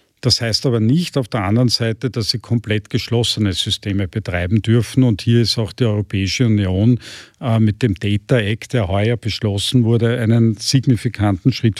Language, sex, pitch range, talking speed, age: German, male, 105-125 Hz, 170 wpm, 50-69